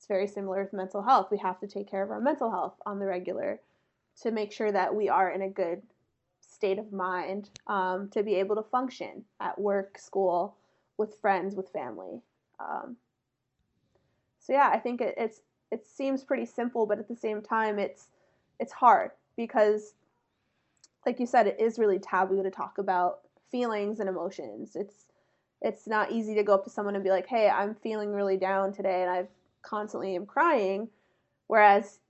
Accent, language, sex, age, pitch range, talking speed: American, English, female, 20-39, 195-220 Hz, 185 wpm